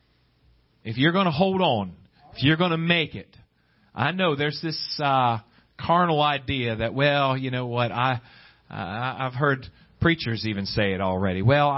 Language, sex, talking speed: English, male, 170 wpm